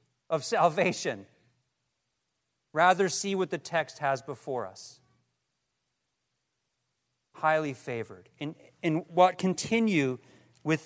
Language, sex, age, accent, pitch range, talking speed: English, male, 40-59, American, 155-235 Hz, 95 wpm